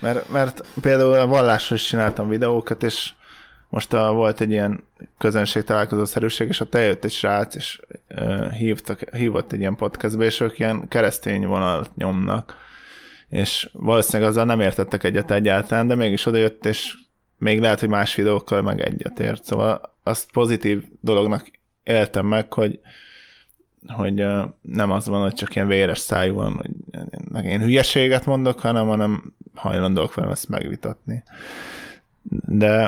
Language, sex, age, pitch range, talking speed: Hungarian, male, 20-39, 100-115 Hz, 145 wpm